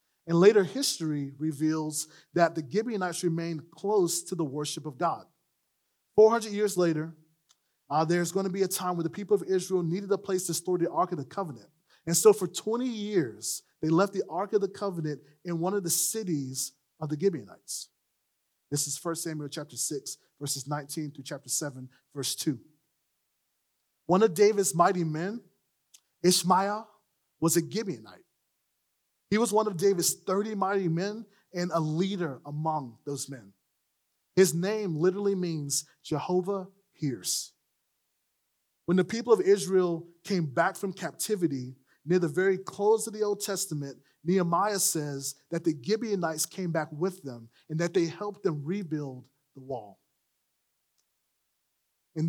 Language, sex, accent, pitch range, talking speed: English, male, American, 150-195 Hz, 155 wpm